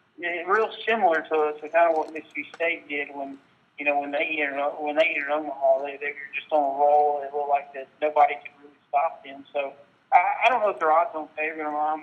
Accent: American